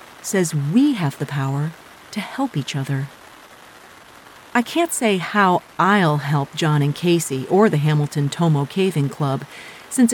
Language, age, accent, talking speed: English, 40-59, American, 150 wpm